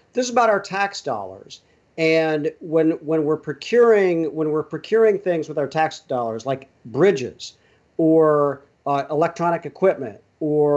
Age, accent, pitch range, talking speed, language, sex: 50-69, American, 145-180 Hz, 145 wpm, English, male